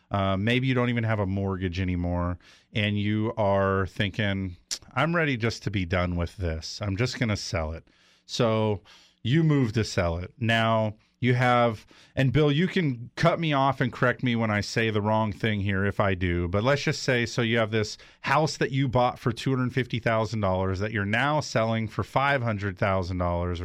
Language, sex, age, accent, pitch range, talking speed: English, male, 40-59, American, 105-140 Hz, 195 wpm